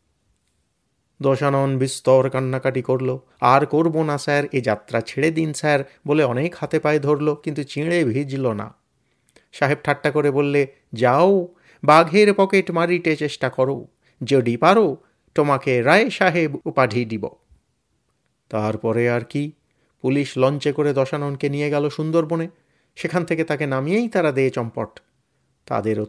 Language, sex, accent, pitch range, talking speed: Bengali, male, native, 120-150 Hz, 130 wpm